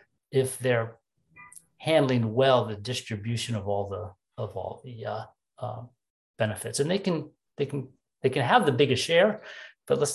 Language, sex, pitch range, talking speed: English, male, 115-145 Hz, 165 wpm